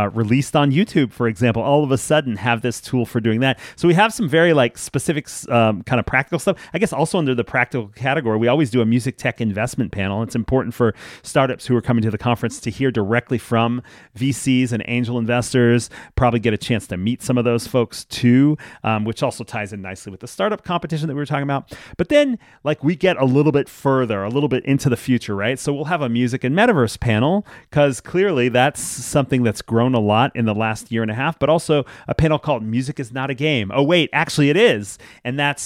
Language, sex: English, male